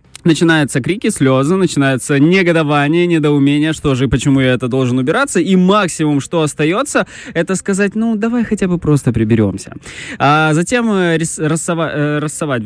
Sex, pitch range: male, 125-170 Hz